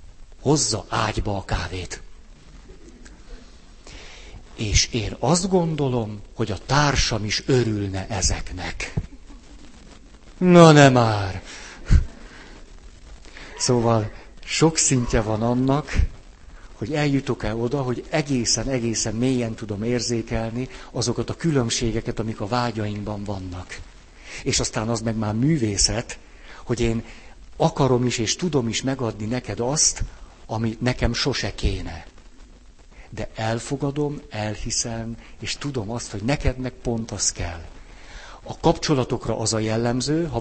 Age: 60-79